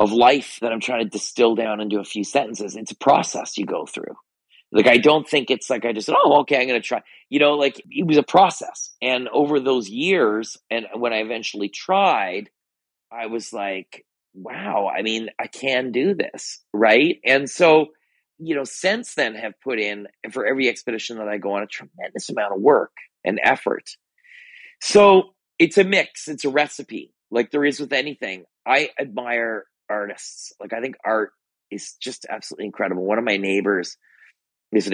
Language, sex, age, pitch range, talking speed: English, male, 40-59, 105-155 Hz, 190 wpm